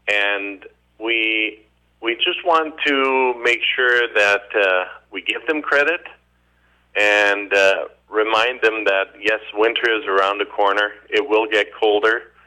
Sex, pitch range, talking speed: male, 95-145 Hz, 140 wpm